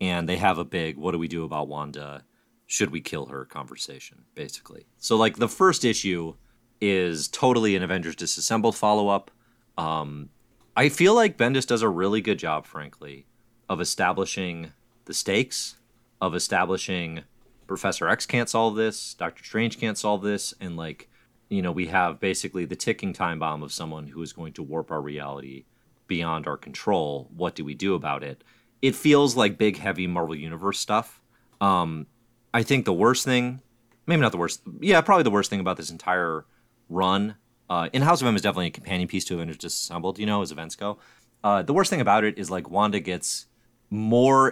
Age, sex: 30-49, male